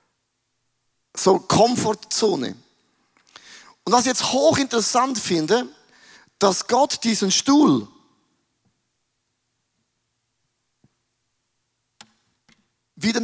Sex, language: male, German